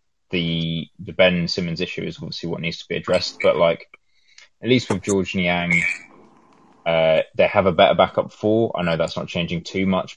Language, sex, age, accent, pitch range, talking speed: English, male, 20-39, British, 80-95 Hz, 195 wpm